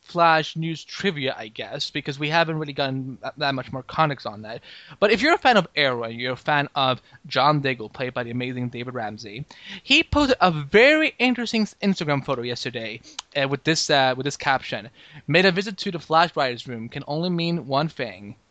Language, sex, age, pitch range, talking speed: English, male, 20-39, 130-175 Hz, 210 wpm